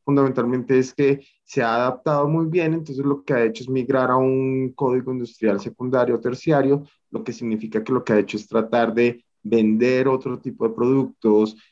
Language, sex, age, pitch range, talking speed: Spanish, male, 30-49, 105-125 Hz, 195 wpm